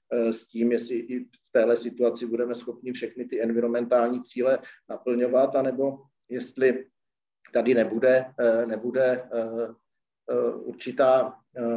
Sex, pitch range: male, 115-125 Hz